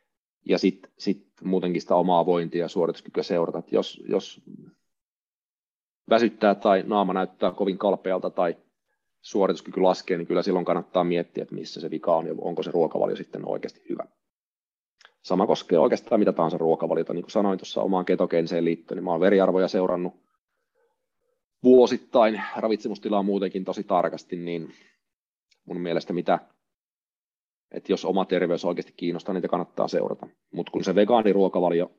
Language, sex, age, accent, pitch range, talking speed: Finnish, male, 30-49, native, 85-105 Hz, 145 wpm